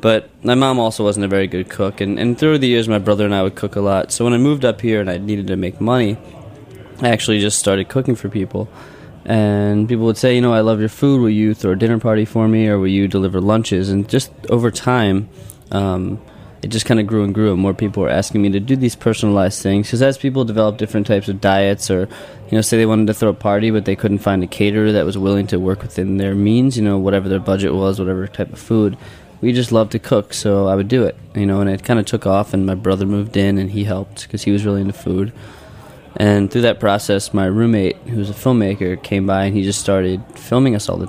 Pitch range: 95-115 Hz